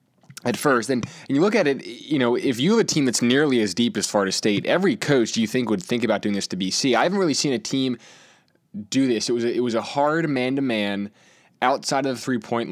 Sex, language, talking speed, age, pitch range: male, English, 250 wpm, 20-39, 105-130 Hz